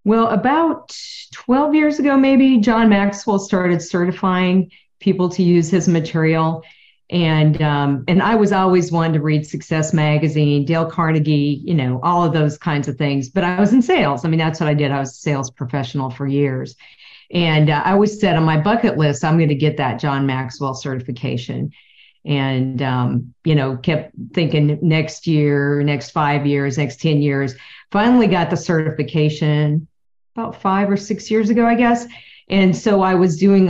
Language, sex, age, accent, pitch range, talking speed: English, female, 50-69, American, 145-185 Hz, 180 wpm